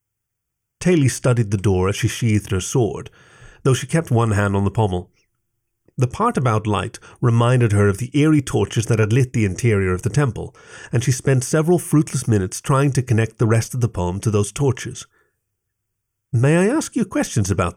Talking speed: 195 wpm